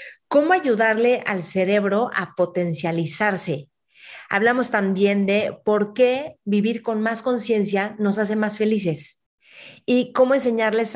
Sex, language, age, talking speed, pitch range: female, Spanish, 30-49, 120 wpm, 180-215 Hz